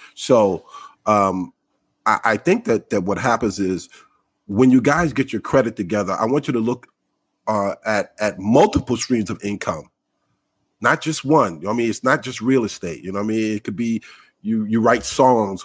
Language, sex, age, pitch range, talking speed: English, male, 40-59, 105-135 Hz, 205 wpm